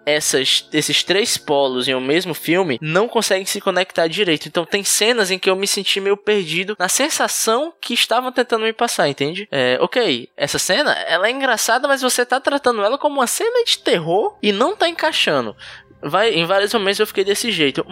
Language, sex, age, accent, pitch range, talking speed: Portuguese, male, 10-29, Brazilian, 145-220 Hz, 200 wpm